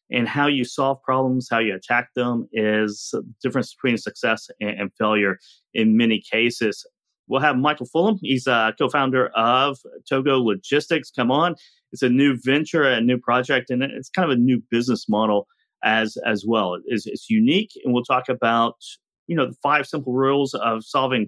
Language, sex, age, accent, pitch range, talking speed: English, male, 40-59, American, 115-145 Hz, 180 wpm